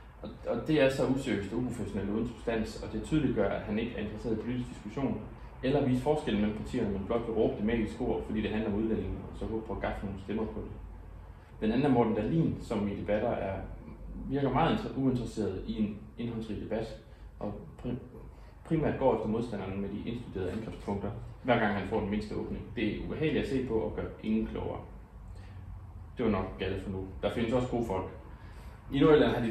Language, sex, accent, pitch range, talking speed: Danish, male, native, 100-120 Hz, 220 wpm